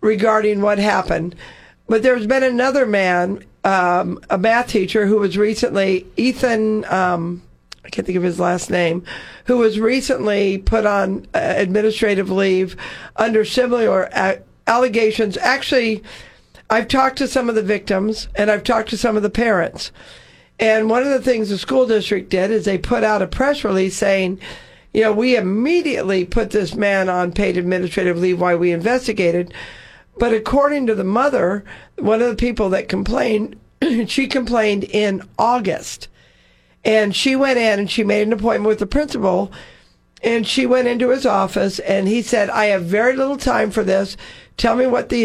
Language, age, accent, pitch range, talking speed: English, 50-69, American, 190-235 Hz, 170 wpm